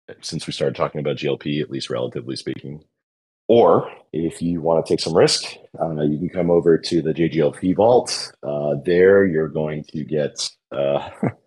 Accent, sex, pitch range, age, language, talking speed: American, male, 70-85 Hz, 30-49, English, 190 wpm